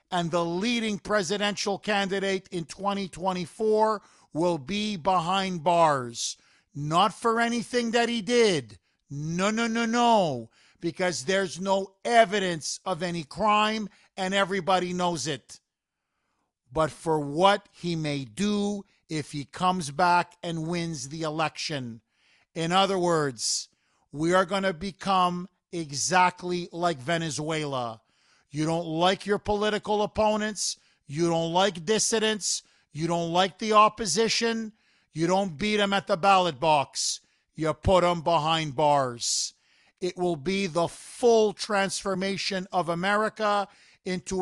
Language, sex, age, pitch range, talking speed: English, male, 50-69, 165-205 Hz, 125 wpm